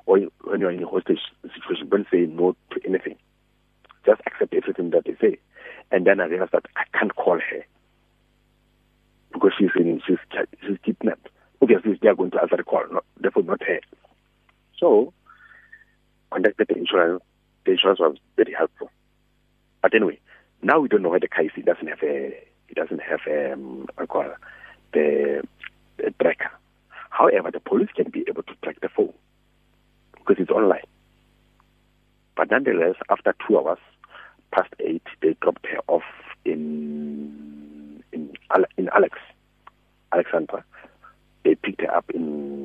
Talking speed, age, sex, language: 155 wpm, 60-79, male, English